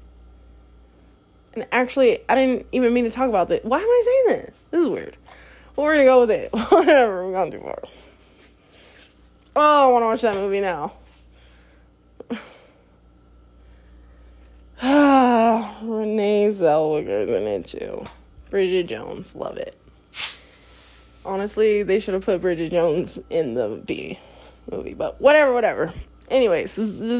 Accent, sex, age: American, female, 20-39